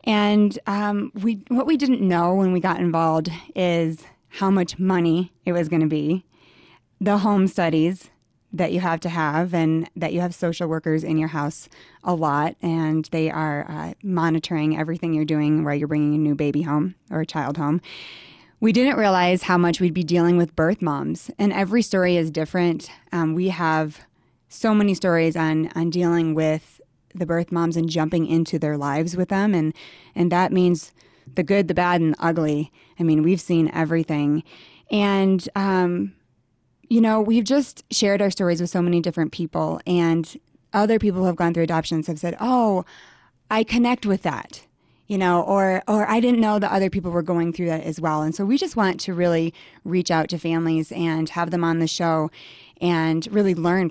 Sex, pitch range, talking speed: female, 160-190 Hz, 195 wpm